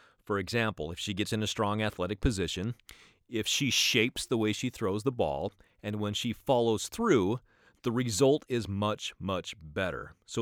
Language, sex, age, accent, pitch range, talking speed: English, male, 30-49, American, 100-135 Hz, 180 wpm